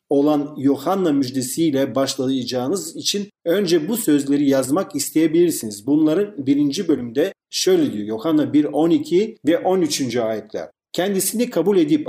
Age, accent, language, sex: 40-59, native, Turkish, male